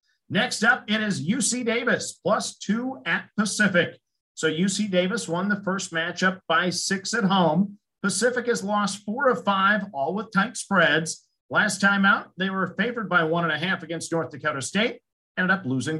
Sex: male